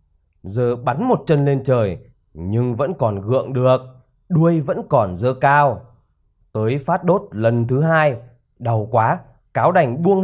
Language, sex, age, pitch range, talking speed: Vietnamese, male, 20-39, 110-155 Hz, 160 wpm